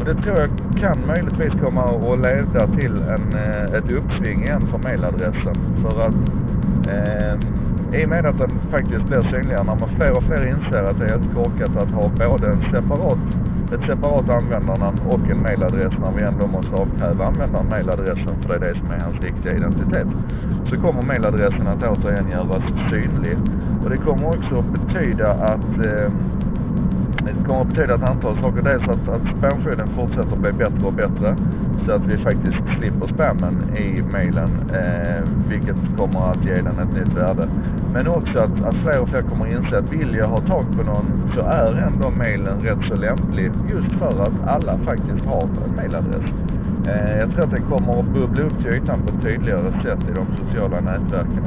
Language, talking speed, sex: Swedish, 190 wpm, male